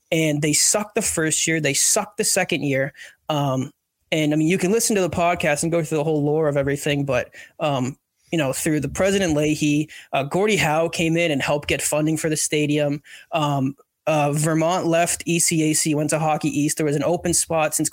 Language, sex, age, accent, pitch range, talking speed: English, male, 20-39, American, 150-170 Hz, 215 wpm